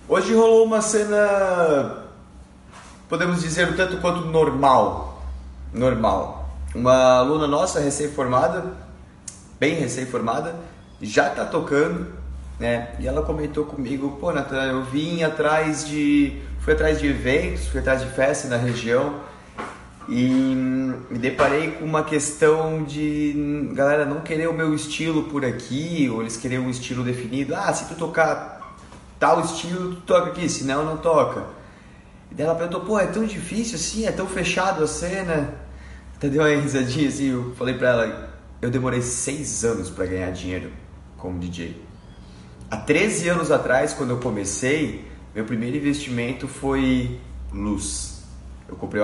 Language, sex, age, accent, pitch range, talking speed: Portuguese, male, 20-39, Brazilian, 100-155 Hz, 145 wpm